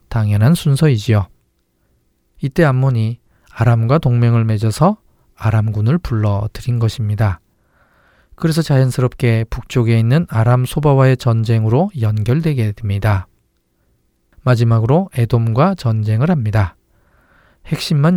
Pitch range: 110-140 Hz